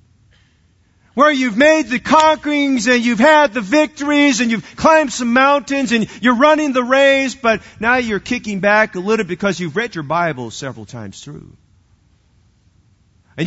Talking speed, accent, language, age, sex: 160 wpm, American, English, 40-59, male